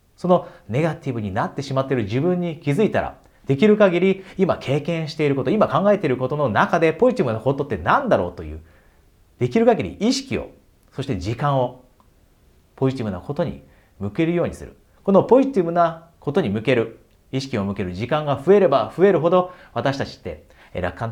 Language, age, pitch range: Japanese, 40-59, 100-145 Hz